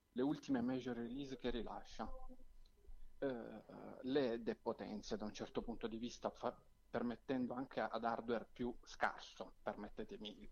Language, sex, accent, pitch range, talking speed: Italian, male, native, 115-140 Hz, 135 wpm